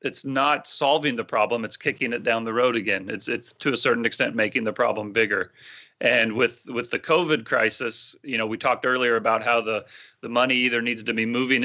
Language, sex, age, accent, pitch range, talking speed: English, male, 30-49, American, 115-150 Hz, 220 wpm